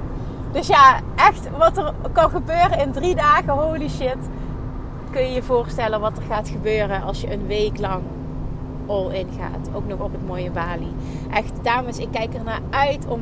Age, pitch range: 30-49, 215-310 Hz